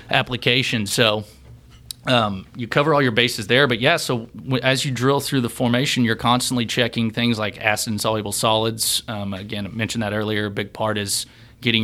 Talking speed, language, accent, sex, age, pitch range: 200 wpm, English, American, male, 20-39, 105-120 Hz